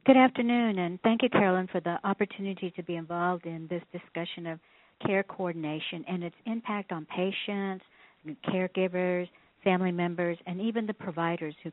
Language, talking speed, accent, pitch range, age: English, 160 wpm, American, 170-195 Hz, 60-79